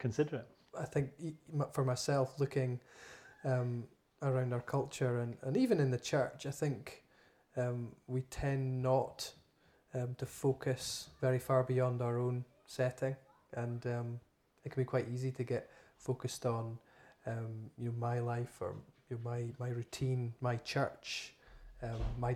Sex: male